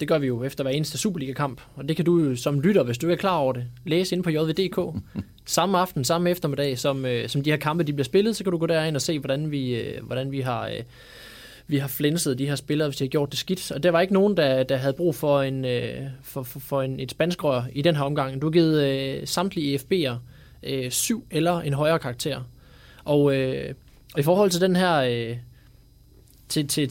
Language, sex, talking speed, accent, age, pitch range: Danish, male, 240 wpm, native, 20-39, 130-165 Hz